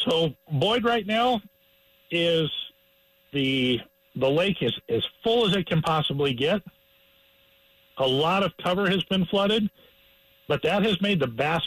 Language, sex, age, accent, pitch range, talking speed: English, male, 50-69, American, 130-185 Hz, 150 wpm